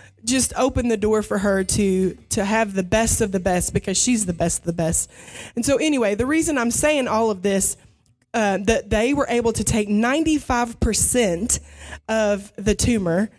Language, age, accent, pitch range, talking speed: English, 20-39, American, 200-240 Hz, 195 wpm